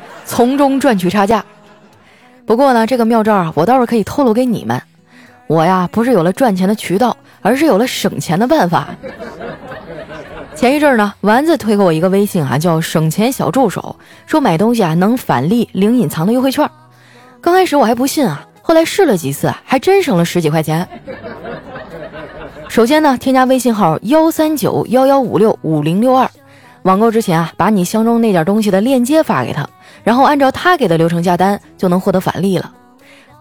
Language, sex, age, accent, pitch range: Chinese, female, 20-39, native, 175-245 Hz